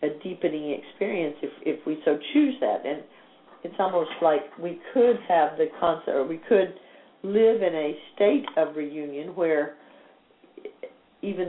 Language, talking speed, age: English, 150 wpm, 50-69